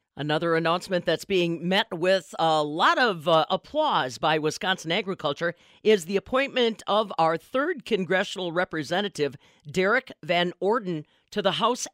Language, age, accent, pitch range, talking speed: English, 50-69, American, 165-200 Hz, 140 wpm